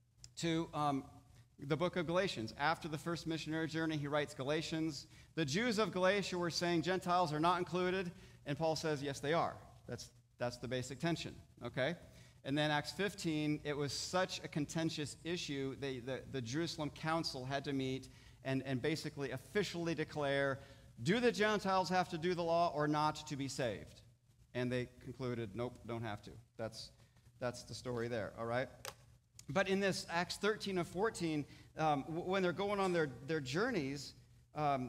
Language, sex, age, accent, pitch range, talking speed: English, male, 40-59, American, 120-170 Hz, 175 wpm